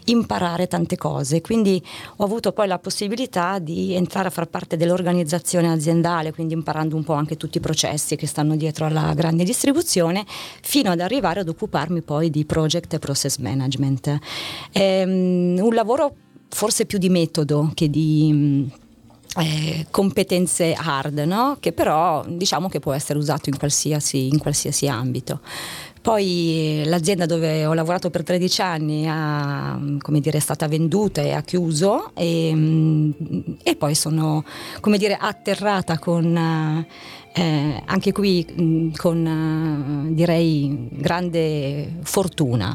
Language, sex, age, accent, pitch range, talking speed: Italian, female, 30-49, native, 150-180 Hz, 130 wpm